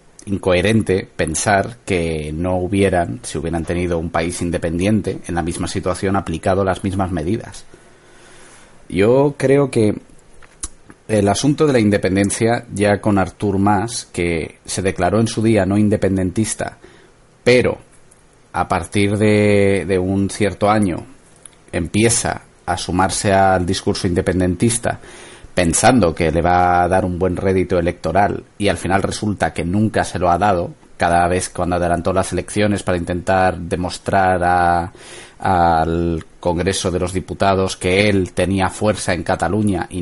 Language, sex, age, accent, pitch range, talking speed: Spanish, male, 30-49, Spanish, 90-100 Hz, 140 wpm